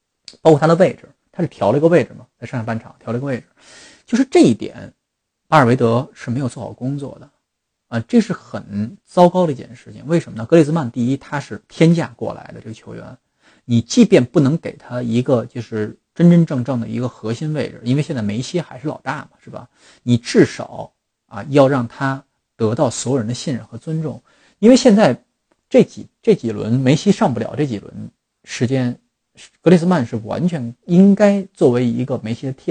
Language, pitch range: Chinese, 115-160 Hz